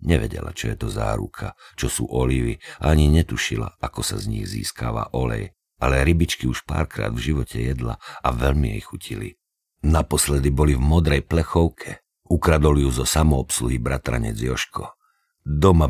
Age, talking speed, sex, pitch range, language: 50-69, 145 wpm, male, 65-90 Hz, Slovak